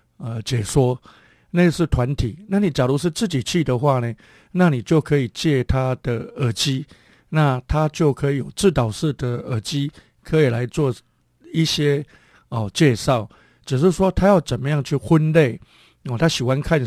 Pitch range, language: 125-155 Hz, Chinese